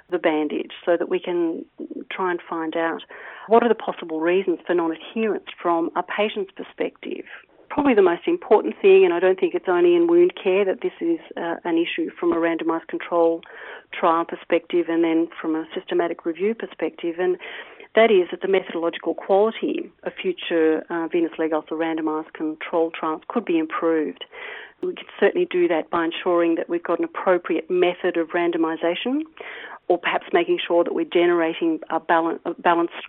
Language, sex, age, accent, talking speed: English, female, 40-59, Australian, 180 wpm